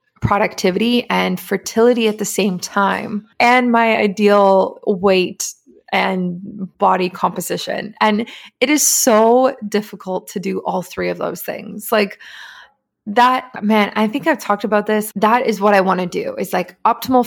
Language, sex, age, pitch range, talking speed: English, female, 20-39, 185-220 Hz, 155 wpm